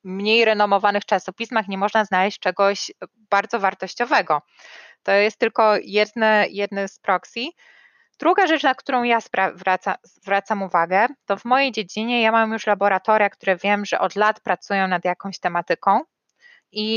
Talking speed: 145 wpm